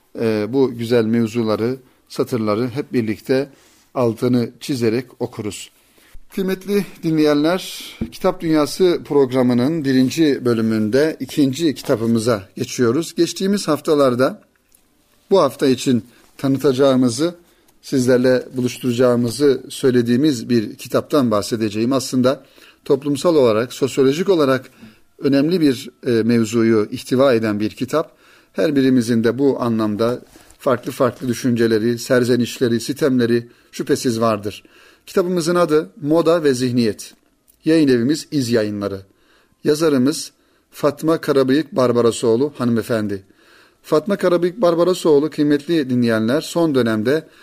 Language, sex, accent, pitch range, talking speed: Turkish, male, native, 120-150 Hz, 100 wpm